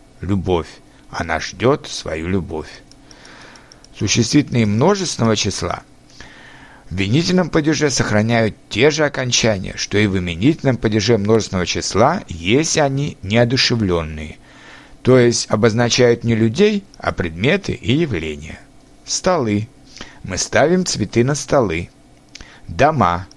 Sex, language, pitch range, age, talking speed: male, Russian, 100-140 Hz, 60-79, 105 wpm